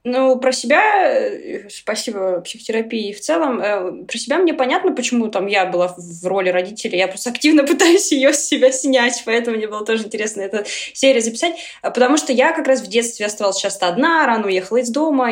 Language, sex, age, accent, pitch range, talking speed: Russian, female, 20-39, native, 200-265 Hz, 190 wpm